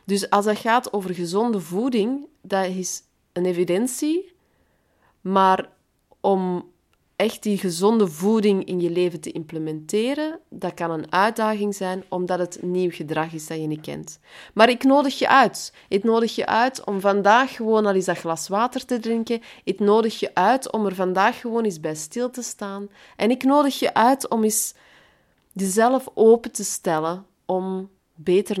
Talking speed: 170 wpm